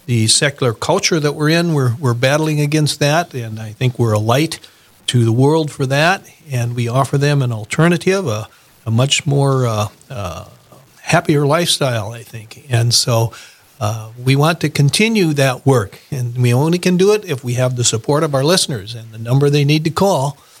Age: 50-69